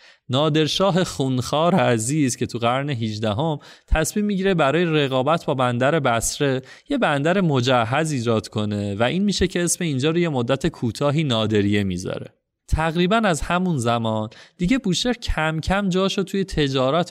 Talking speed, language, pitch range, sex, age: 145 wpm, Persian, 120-165 Hz, male, 30-49